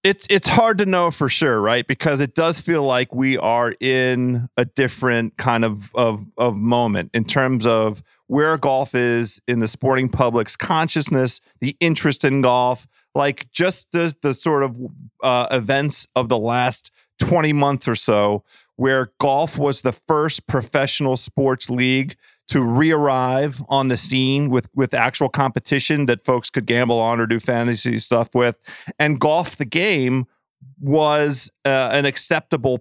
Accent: American